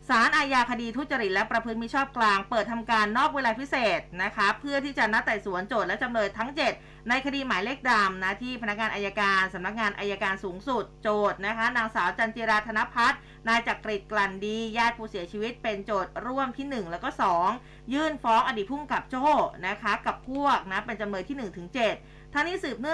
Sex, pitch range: female, 200-250 Hz